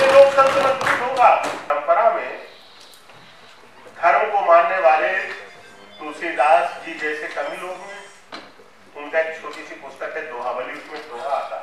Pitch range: 150-215 Hz